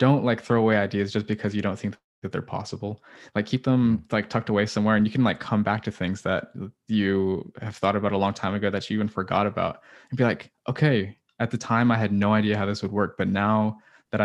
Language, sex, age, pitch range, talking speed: English, male, 20-39, 100-110 Hz, 255 wpm